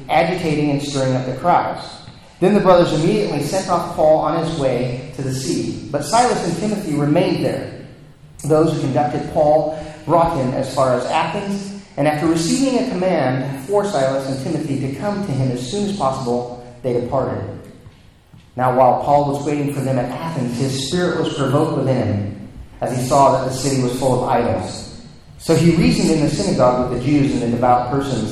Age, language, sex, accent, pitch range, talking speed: 40-59, English, male, American, 130-165 Hz, 195 wpm